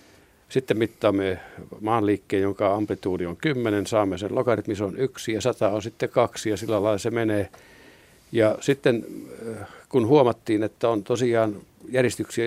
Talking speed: 145 wpm